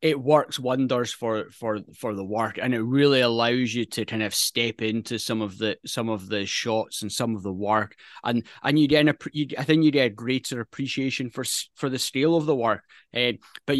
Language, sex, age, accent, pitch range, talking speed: English, male, 20-39, British, 115-140 Hz, 225 wpm